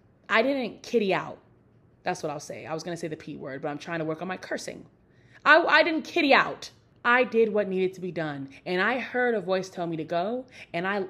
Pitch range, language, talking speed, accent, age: 160-225 Hz, English, 255 wpm, American, 20-39